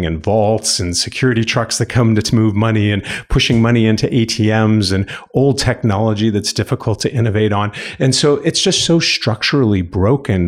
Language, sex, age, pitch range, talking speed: English, male, 40-59, 95-125 Hz, 170 wpm